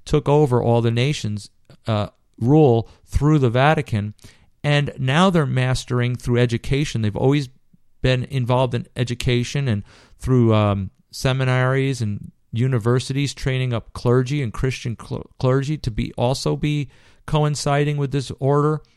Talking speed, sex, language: 135 wpm, male, English